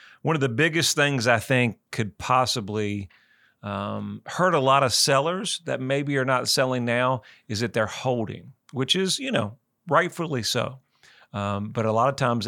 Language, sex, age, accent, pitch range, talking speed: English, male, 40-59, American, 110-135 Hz, 180 wpm